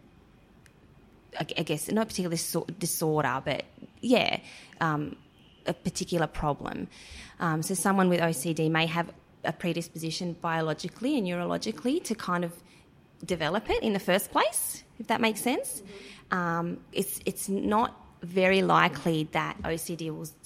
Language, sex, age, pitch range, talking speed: Malay, female, 20-39, 155-190 Hz, 135 wpm